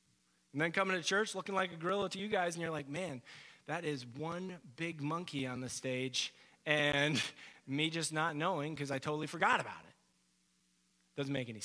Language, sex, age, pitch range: English, male, 30-49, 150-230 Hz